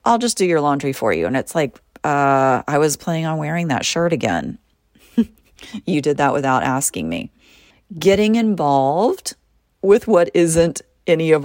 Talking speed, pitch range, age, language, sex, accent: 170 wpm, 130-170 Hz, 30-49, English, female, American